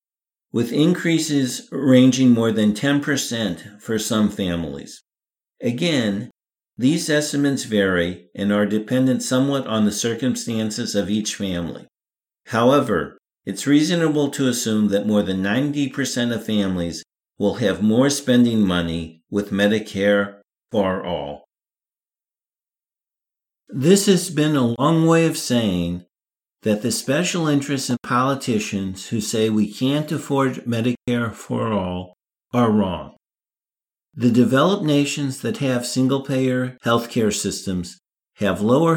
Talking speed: 120 wpm